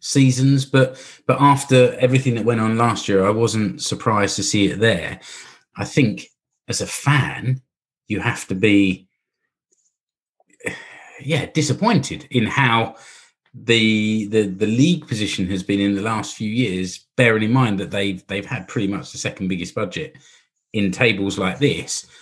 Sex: male